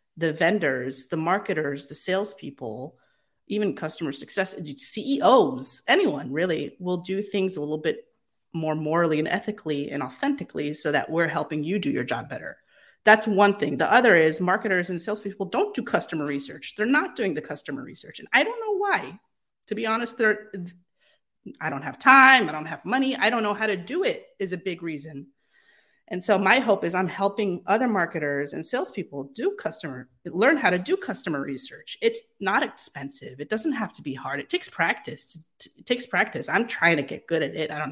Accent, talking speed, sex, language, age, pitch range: American, 195 wpm, female, English, 30-49, 165-230 Hz